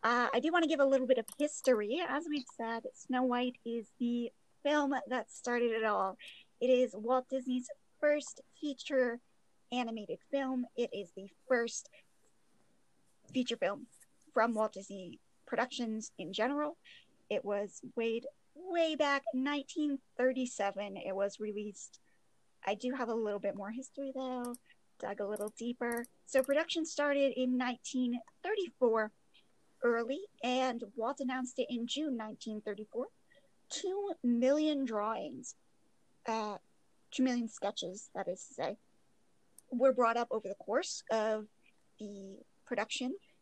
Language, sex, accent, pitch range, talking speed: English, female, American, 225-275 Hz, 135 wpm